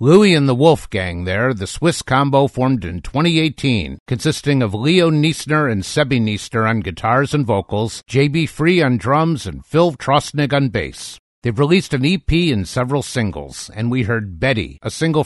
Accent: American